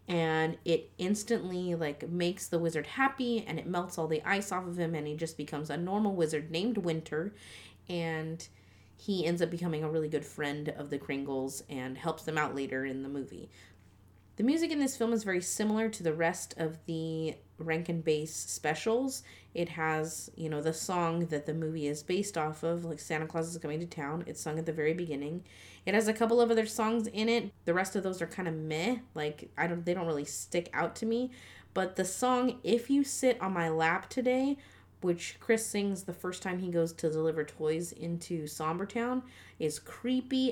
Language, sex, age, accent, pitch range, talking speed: English, female, 30-49, American, 155-220 Hz, 210 wpm